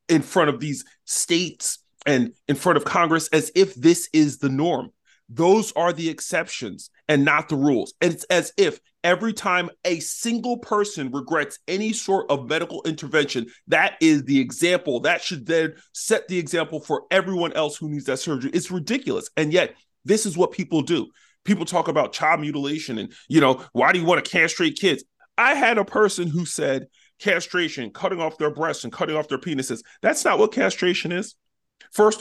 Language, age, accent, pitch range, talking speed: English, 30-49, American, 155-220 Hz, 190 wpm